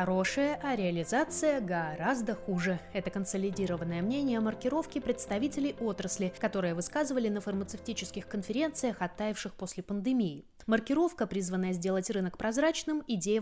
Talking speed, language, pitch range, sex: 120 wpm, Russian, 185-255 Hz, female